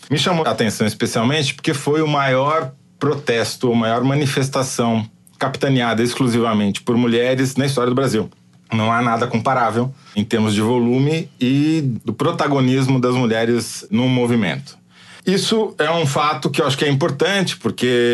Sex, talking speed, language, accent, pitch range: male, 155 wpm, Portuguese, Brazilian, 115-145 Hz